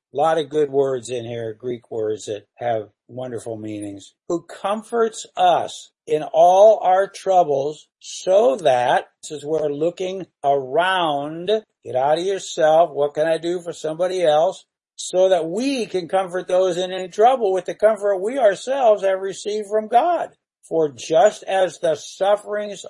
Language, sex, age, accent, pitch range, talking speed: English, male, 60-79, American, 150-190 Hz, 160 wpm